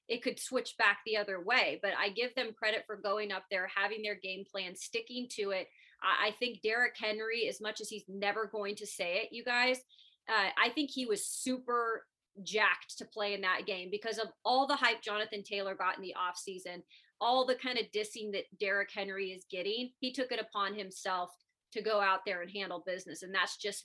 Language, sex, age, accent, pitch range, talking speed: English, female, 30-49, American, 195-245 Hz, 220 wpm